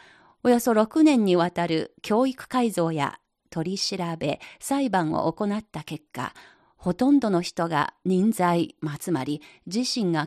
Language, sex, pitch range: Japanese, female, 170-240 Hz